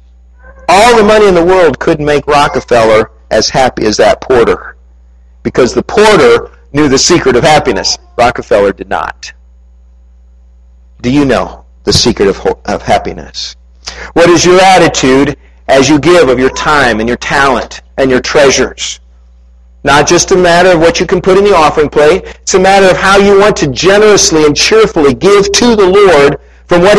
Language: English